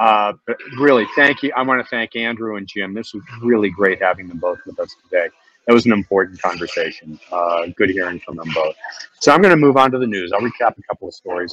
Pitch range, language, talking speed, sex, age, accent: 90-120 Hz, English, 250 wpm, male, 40-59, American